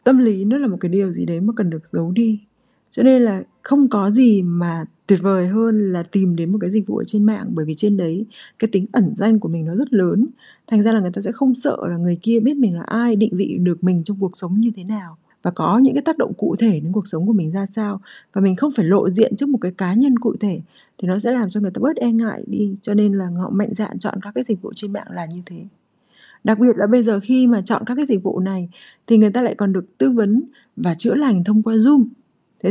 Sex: female